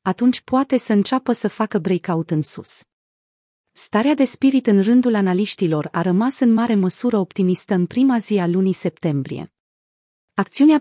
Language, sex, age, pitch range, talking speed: Romanian, female, 30-49, 175-225 Hz, 155 wpm